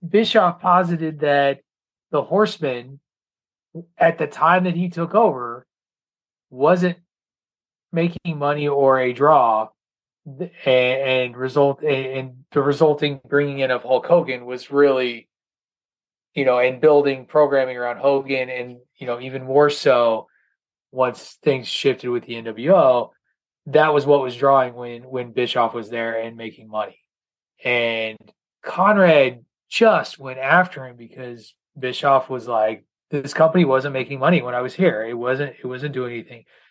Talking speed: 145 wpm